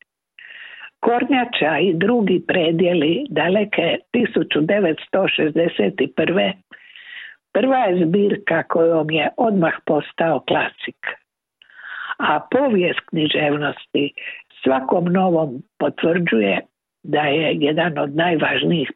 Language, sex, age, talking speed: Croatian, female, 60-79, 80 wpm